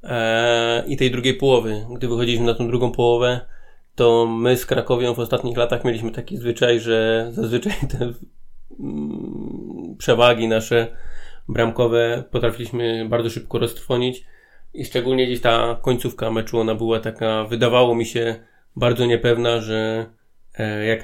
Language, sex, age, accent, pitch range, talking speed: Polish, male, 20-39, native, 115-120 Hz, 130 wpm